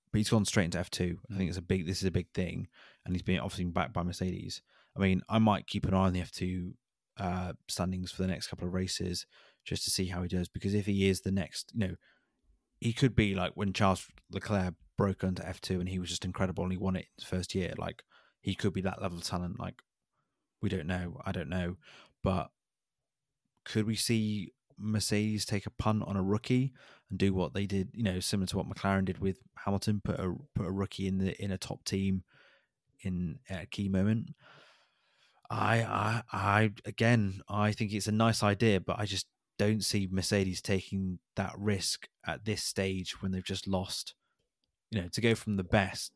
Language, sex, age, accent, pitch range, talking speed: English, male, 20-39, British, 90-105 Hz, 220 wpm